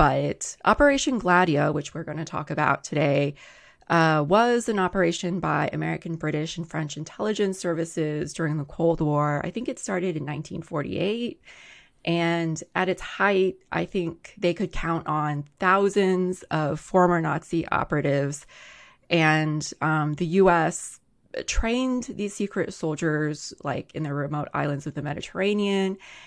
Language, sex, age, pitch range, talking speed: English, female, 20-39, 150-185 Hz, 140 wpm